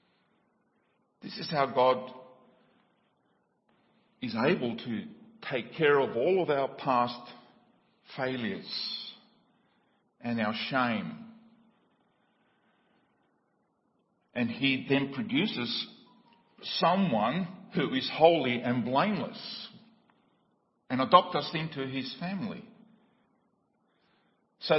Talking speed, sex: 85 wpm, male